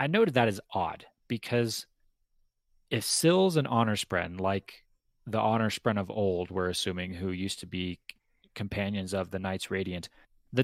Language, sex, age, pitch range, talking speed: English, male, 30-49, 95-130 Hz, 165 wpm